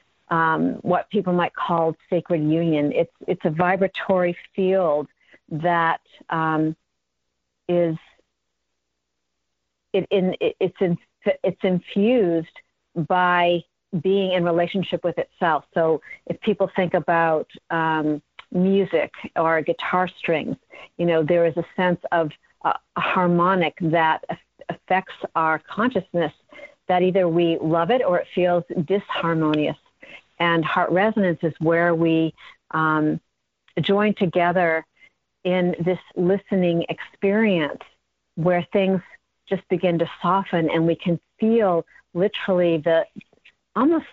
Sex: female